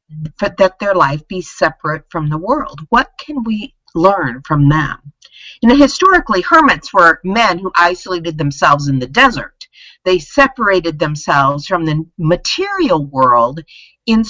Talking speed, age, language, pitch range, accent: 145 wpm, 50-69, English, 150-230 Hz, American